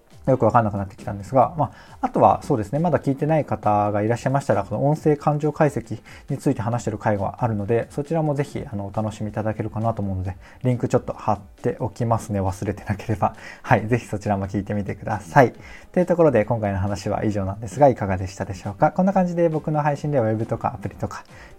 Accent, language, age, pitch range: native, Japanese, 20-39, 105-130 Hz